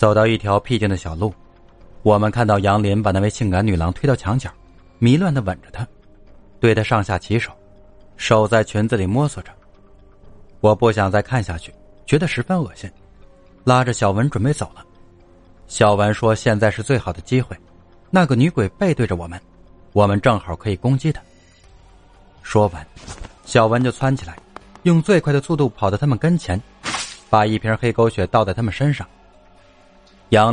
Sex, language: male, Chinese